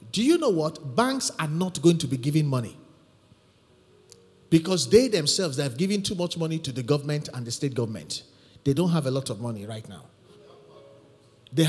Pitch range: 155-220 Hz